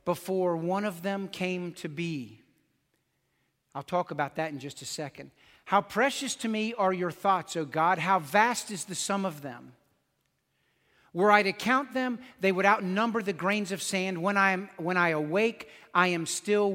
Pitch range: 165-210 Hz